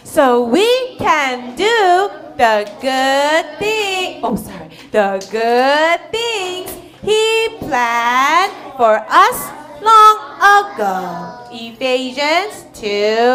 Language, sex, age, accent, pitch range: Korean, female, 30-49, American, 240-345 Hz